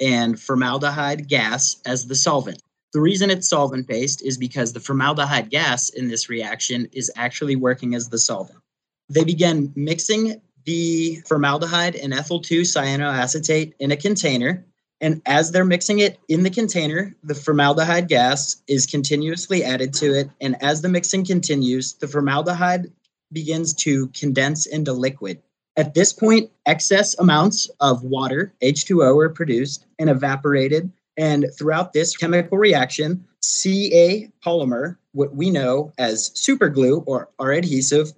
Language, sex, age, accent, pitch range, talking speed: English, male, 30-49, American, 140-175 Hz, 140 wpm